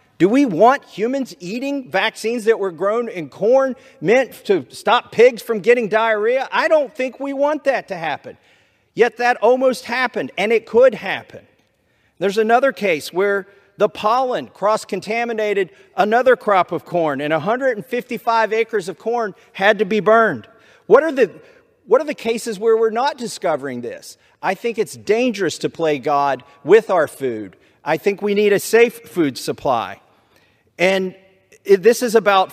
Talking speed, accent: 165 wpm, American